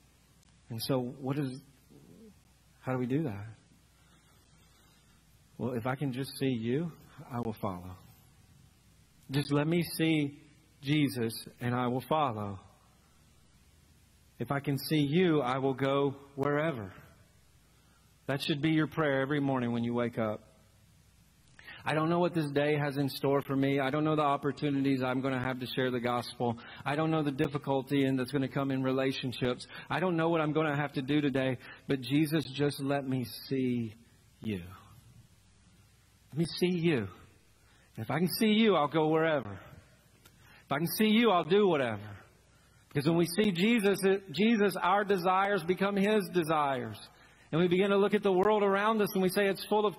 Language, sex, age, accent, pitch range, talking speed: English, male, 40-59, American, 125-165 Hz, 180 wpm